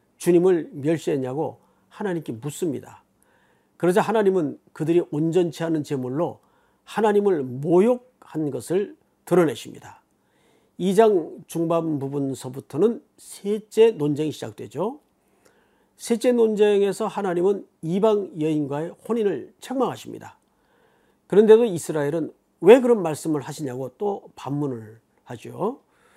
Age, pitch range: 40-59, 150-210 Hz